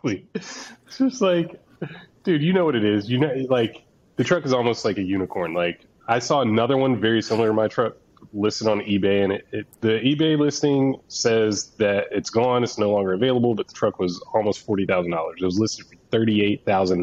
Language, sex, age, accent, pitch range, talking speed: English, male, 30-49, American, 95-125 Hz, 215 wpm